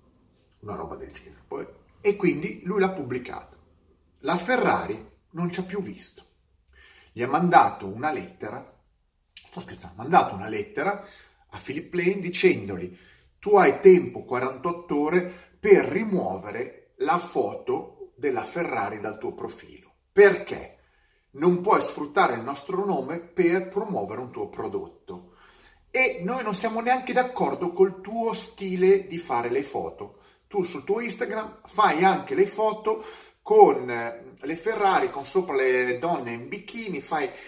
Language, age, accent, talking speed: Italian, 40-59, native, 140 wpm